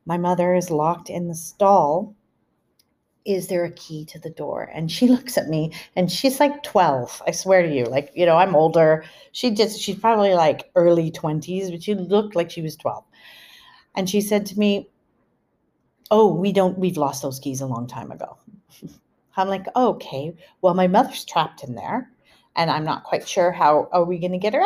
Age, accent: 40-59, American